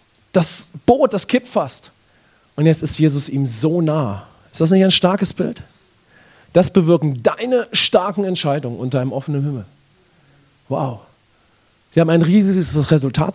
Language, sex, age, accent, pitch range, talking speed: English, male, 30-49, German, 135-185 Hz, 150 wpm